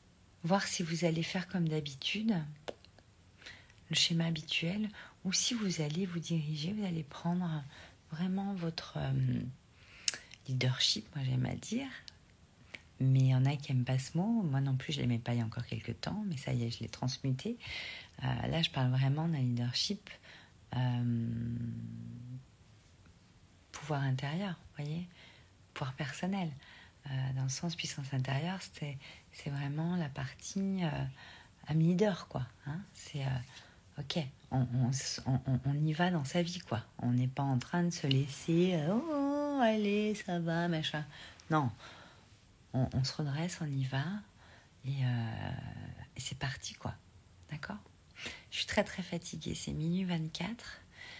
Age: 40-59